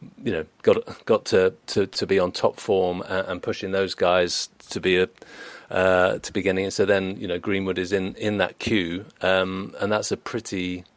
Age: 40-59